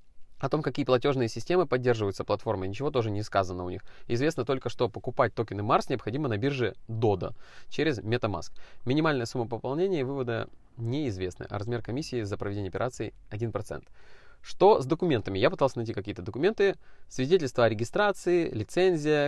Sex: male